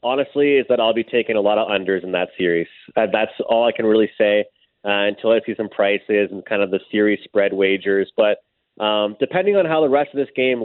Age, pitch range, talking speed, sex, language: 20-39, 100-125 Hz, 240 wpm, male, English